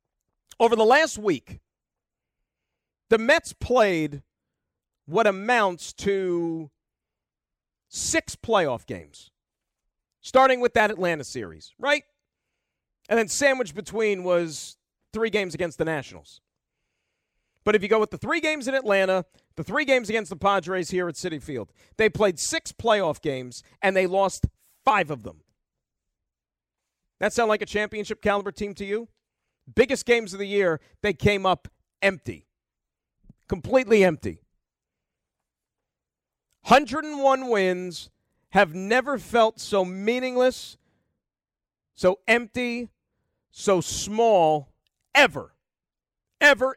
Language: English